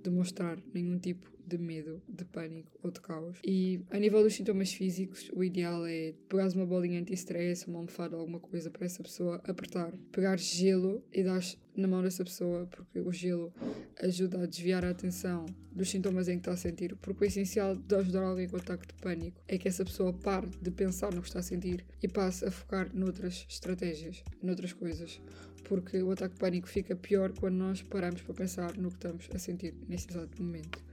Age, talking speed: 20-39, 205 wpm